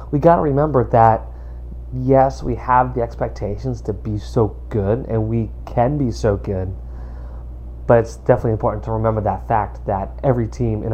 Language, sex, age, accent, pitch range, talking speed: English, male, 30-49, American, 90-125 Hz, 175 wpm